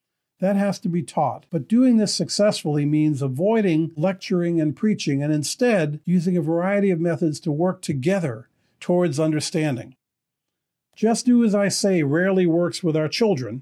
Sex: male